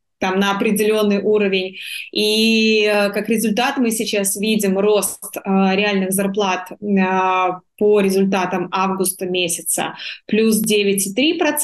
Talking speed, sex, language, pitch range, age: 95 wpm, female, Russian, 200-230 Hz, 20-39